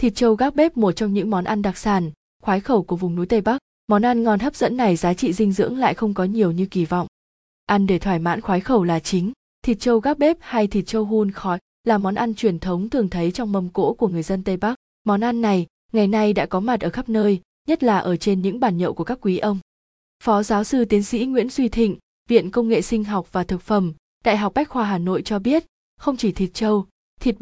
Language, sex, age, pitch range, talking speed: Vietnamese, female, 20-39, 185-235 Hz, 260 wpm